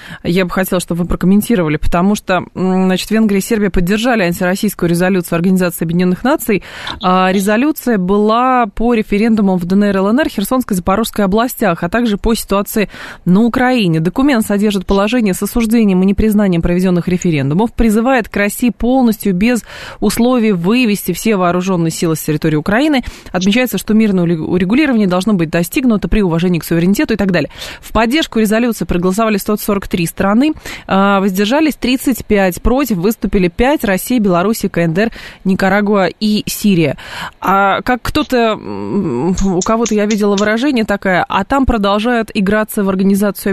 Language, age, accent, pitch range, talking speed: Russian, 20-39, native, 180-225 Hz, 145 wpm